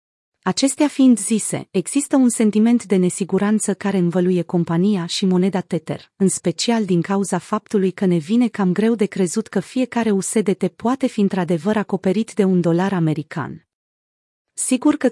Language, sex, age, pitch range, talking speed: Romanian, female, 30-49, 175-220 Hz, 155 wpm